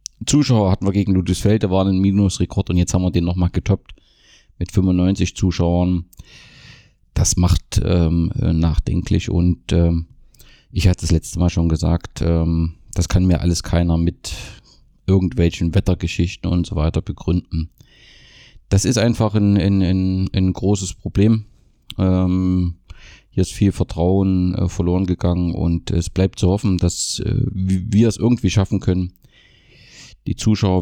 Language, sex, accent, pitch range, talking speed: German, male, German, 90-100 Hz, 145 wpm